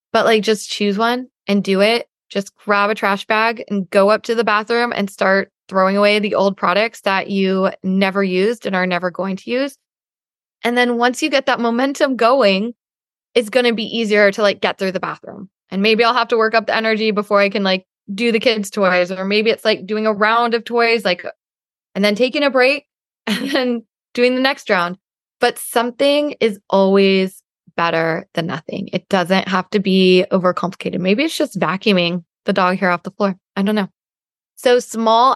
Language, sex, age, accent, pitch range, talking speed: English, female, 20-39, American, 190-225 Hz, 205 wpm